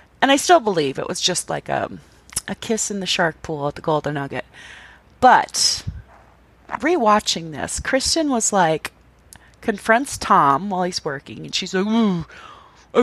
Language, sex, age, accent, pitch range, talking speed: English, female, 30-49, American, 175-230 Hz, 155 wpm